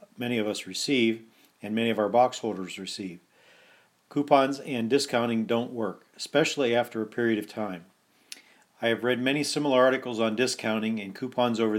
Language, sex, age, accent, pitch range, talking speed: English, male, 50-69, American, 110-130 Hz, 170 wpm